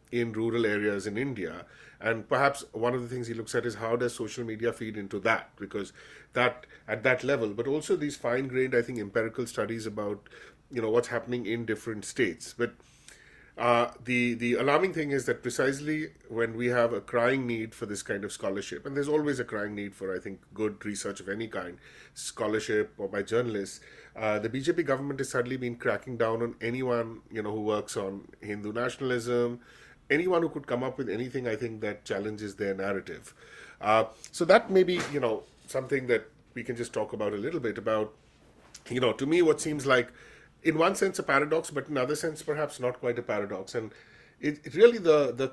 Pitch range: 110-145 Hz